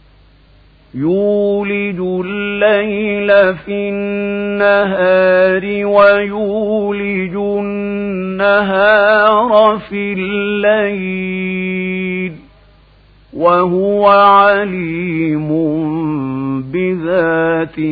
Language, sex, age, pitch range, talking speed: Arabic, male, 50-69, 160-205 Hz, 35 wpm